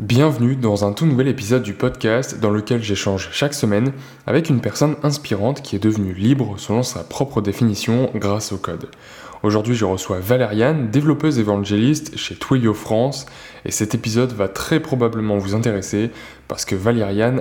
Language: French